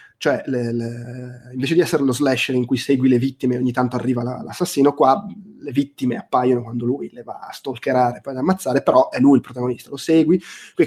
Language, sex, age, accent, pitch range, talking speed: Italian, male, 20-39, native, 125-160 Hz, 225 wpm